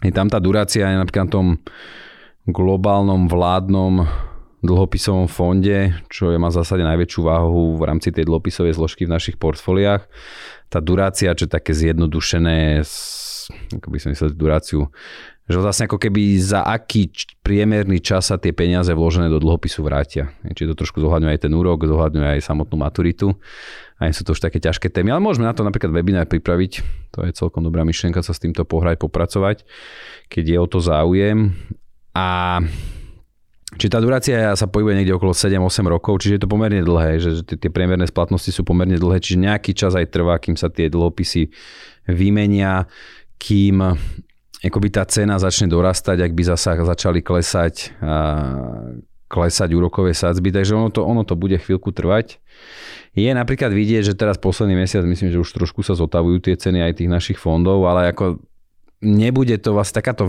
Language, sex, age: Slovak, male, 30-49